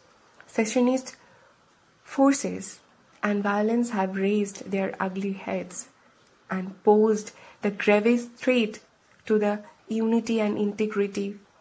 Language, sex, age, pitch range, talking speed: Hindi, female, 20-39, 195-235 Hz, 100 wpm